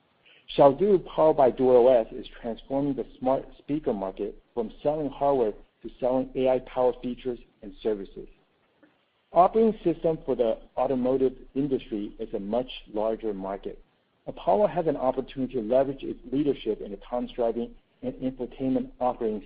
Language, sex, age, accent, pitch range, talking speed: English, male, 50-69, American, 115-145 Hz, 145 wpm